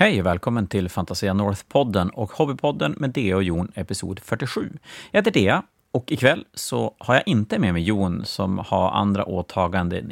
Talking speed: 180 wpm